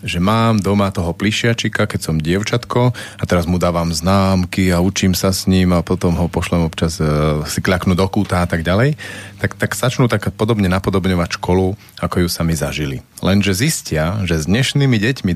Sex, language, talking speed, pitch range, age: male, Slovak, 190 wpm, 85-110 Hz, 40-59